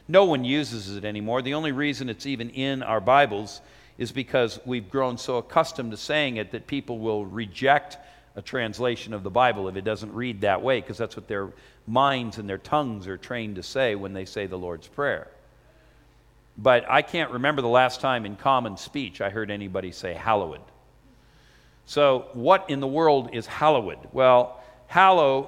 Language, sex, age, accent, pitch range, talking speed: English, male, 50-69, American, 110-145 Hz, 185 wpm